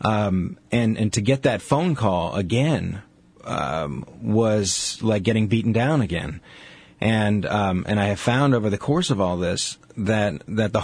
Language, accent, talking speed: English, American, 170 wpm